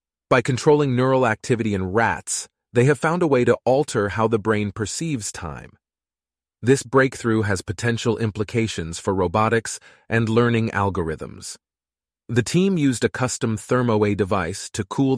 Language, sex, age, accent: English, male, 30-49, American